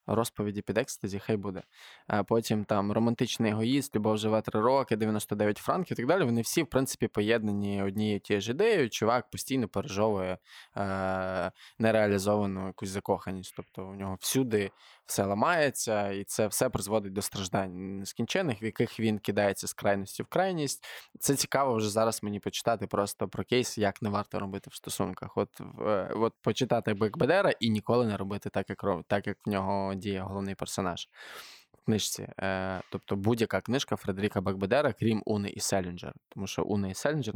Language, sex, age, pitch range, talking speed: Ukrainian, male, 20-39, 95-110 Hz, 165 wpm